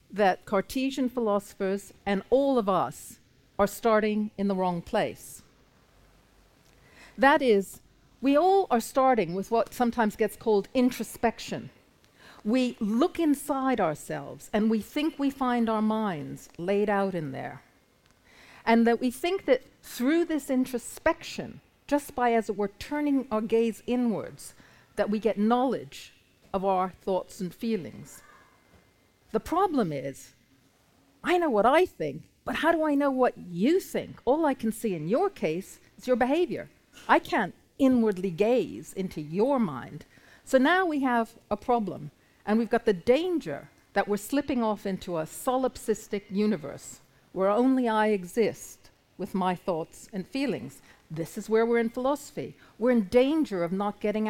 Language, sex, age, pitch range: English, female, 50-69, 195-255 Hz